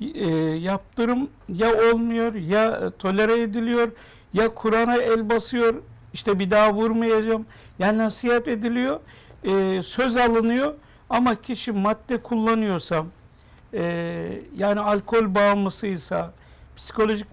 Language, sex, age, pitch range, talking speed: Turkish, male, 60-79, 195-235 Hz, 105 wpm